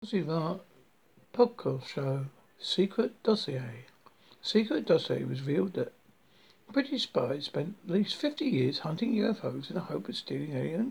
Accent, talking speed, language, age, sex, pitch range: British, 125 wpm, English, 60-79, male, 165-215 Hz